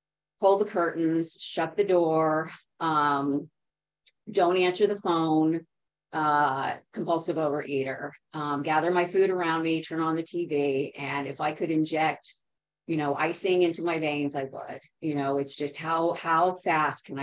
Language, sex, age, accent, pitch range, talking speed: English, female, 40-59, American, 150-175 Hz, 155 wpm